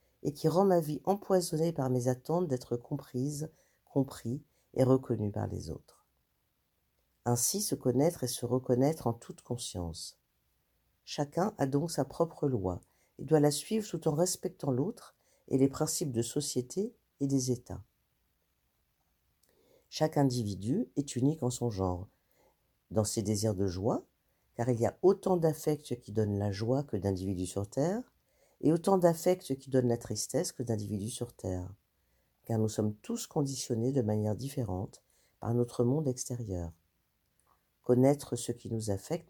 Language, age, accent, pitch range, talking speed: French, 50-69, French, 105-145 Hz, 155 wpm